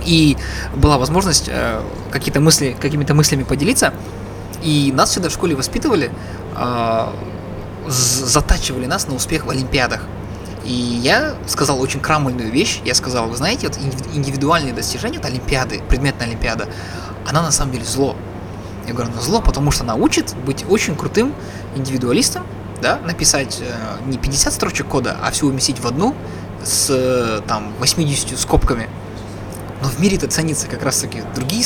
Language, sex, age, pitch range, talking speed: Russian, male, 20-39, 110-145 Hz, 155 wpm